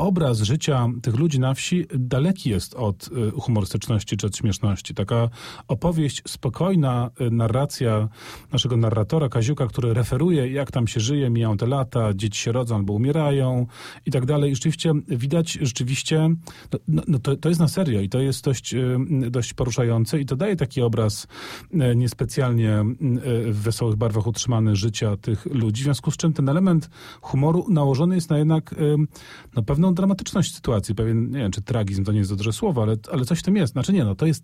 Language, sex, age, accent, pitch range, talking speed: Polish, male, 40-59, native, 115-150 Hz, 180 wpm